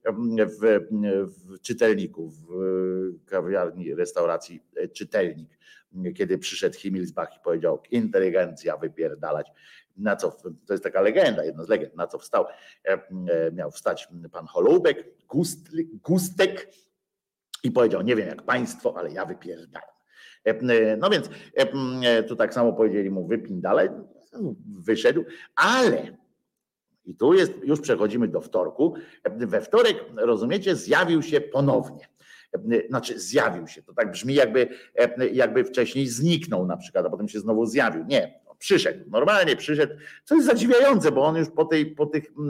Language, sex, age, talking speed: Polish, male, 50-69, 135 wpm